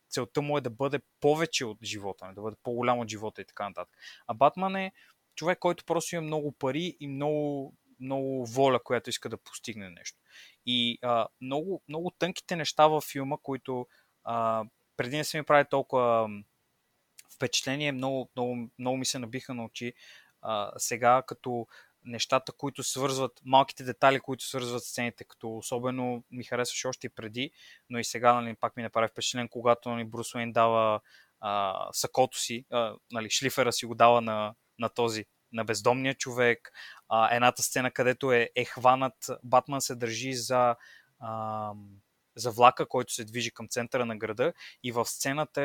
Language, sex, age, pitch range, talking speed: Bulgarian, male, 20-39, 120-140 Hz, 165 wpm